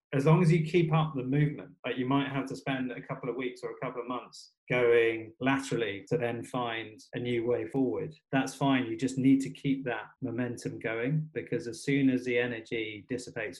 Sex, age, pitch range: male, 30-49, 120-140 Hz